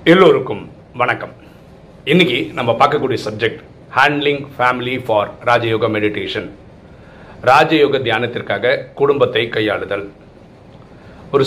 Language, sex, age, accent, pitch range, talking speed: Tamil, male, 40-59, native, 110-135 Hz, 85 wpm